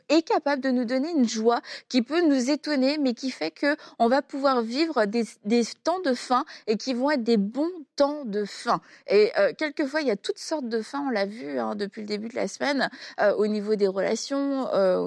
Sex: female